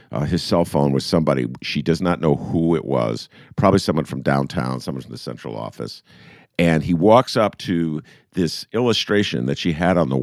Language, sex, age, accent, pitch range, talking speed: English, male, 50-69, American, 95-145 Hz, 200 wpm